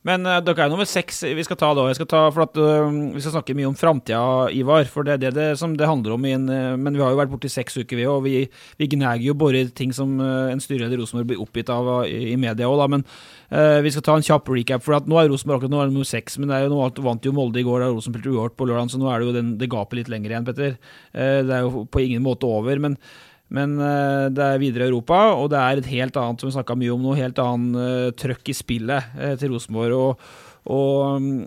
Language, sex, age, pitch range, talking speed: English, male, 30-49, 130-155 Hz, 280 wpm